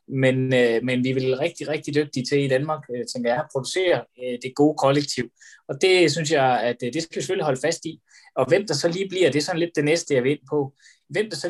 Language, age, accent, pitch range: Danish, 20-39, native, 120-150 Hz